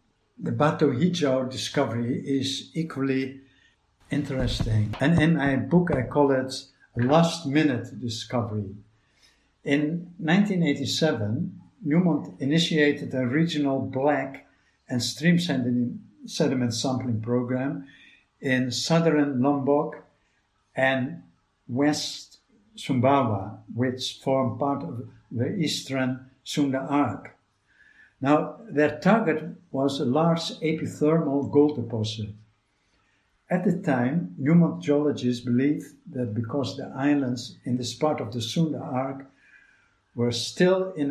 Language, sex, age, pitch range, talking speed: Indonesian, male, 60-79, 120-150 Hz, 105 wpm